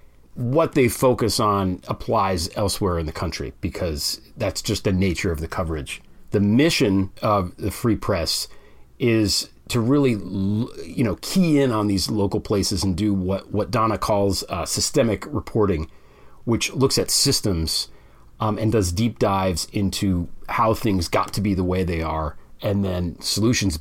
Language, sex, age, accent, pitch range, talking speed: English, male, 40-59, American, 90-115 Hz, 165 wpm